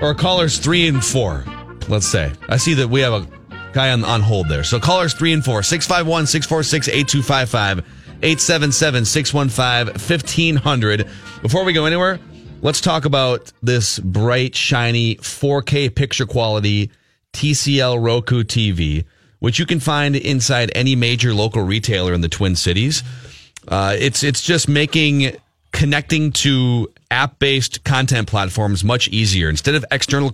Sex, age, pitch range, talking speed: male, 30-49, 105-140 Hz, 135 wpm